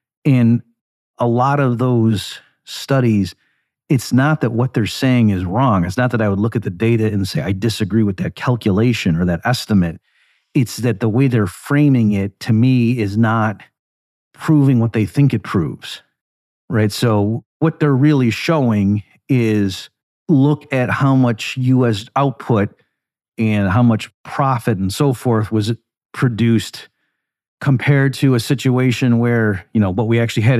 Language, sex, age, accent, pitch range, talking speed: English, male, 40-59, American, 100-125 Hz, 165 wpm